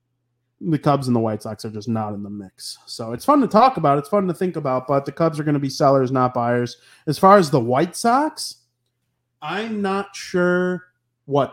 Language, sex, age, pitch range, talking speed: English, male, 30-49, 125-160 Hz, 225 wpm